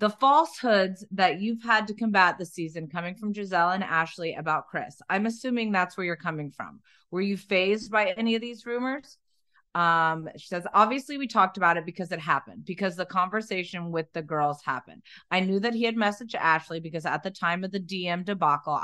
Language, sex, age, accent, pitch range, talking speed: English, female, 30-49, American, 165-205 Hz, 205 wpm